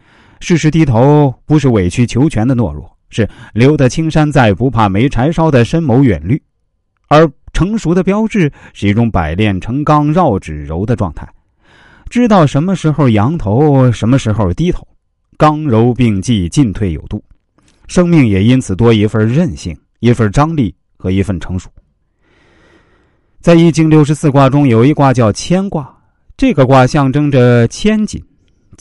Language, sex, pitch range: Chinese, male, 100-150 Hz